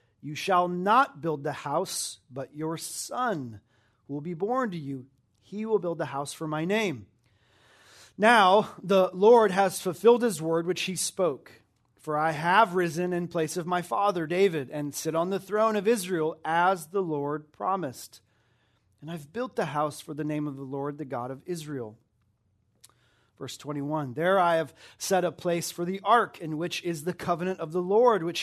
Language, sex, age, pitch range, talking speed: English, male, 30-49, 140-185 Hz, 185 wpm